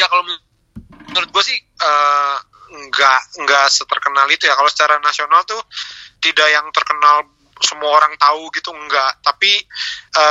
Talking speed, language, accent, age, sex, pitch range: 145 wpm, Indonesian, native, 20-39, male, 145-185 Hz